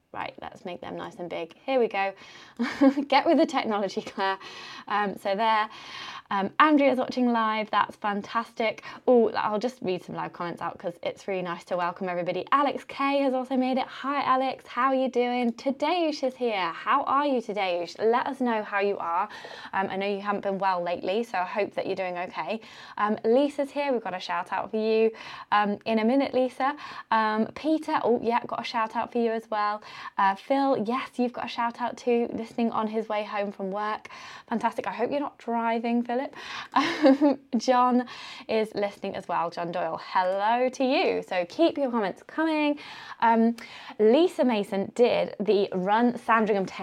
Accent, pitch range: British, 205-260 Hz